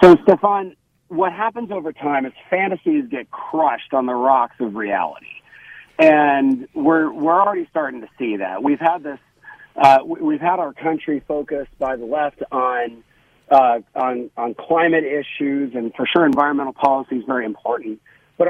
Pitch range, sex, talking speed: 135-195 Hz, male, 160 wpm